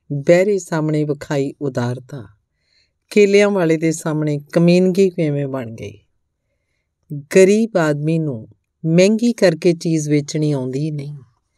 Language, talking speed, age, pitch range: Punjabi, 105 wpm, 50-69, 130-170 Hz